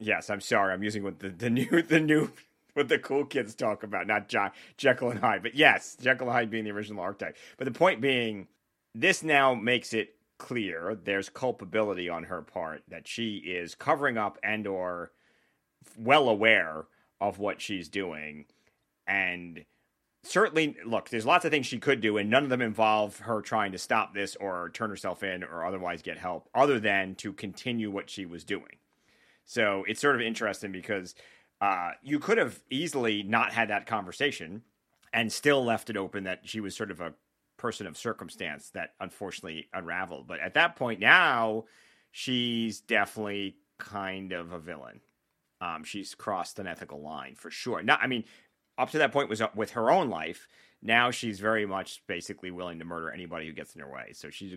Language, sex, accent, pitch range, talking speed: English, male, American, 95-120 Hz, 190 wpm